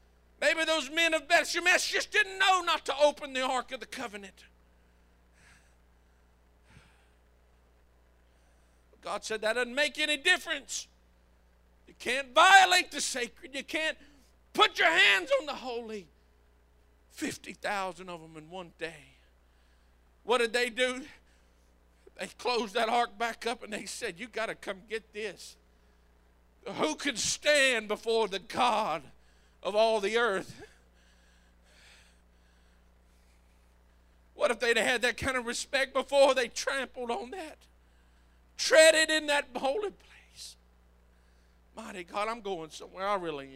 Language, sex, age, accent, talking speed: English, male, 50-69, American, 135 wpm